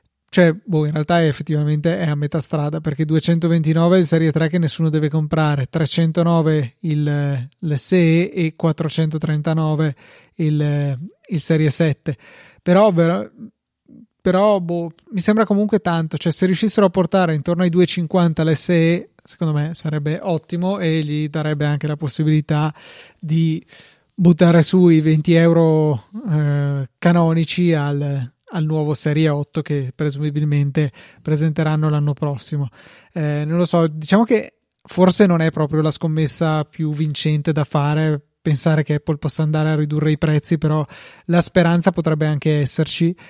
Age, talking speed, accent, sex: 30-49, 145 wpm, native, male